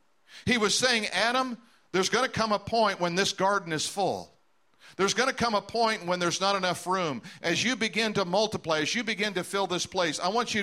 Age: 50-69